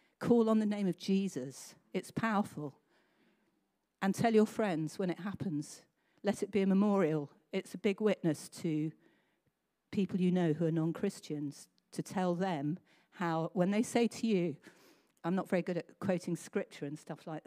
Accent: British